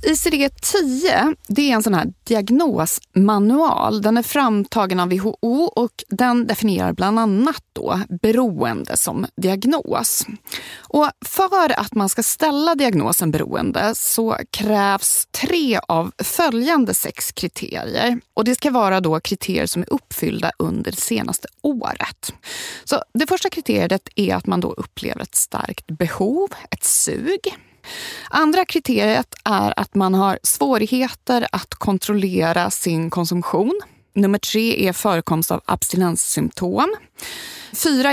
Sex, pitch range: female, 190-295 Hz